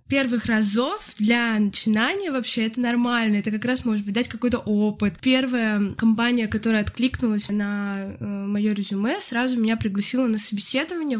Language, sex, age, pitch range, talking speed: Russian, female, 20-39, 210-240 Hz, 150 wpm